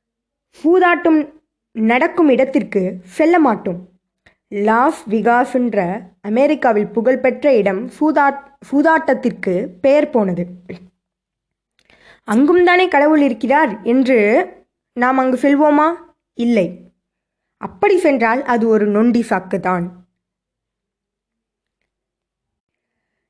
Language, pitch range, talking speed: Tamil, 205-290 Hz, 70 wpm